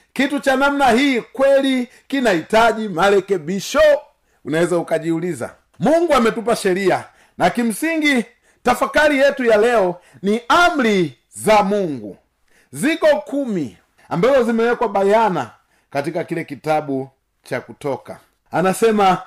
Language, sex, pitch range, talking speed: Swahili, male, 195-280 Hz, 105 wpm